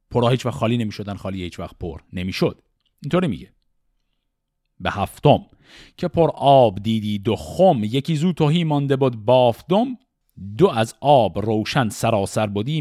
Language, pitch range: Persian, 110-160 Hz